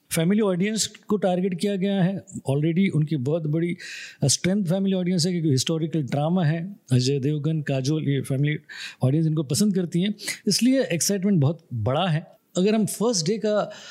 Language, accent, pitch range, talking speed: Hindi, native, 145-190 Hz, 170 wpm